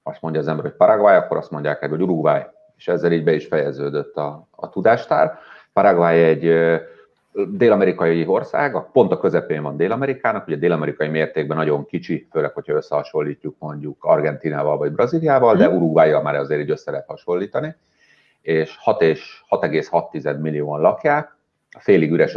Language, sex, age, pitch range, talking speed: Hungarian, male, 30-49, 80-105 Hz, 155 wpm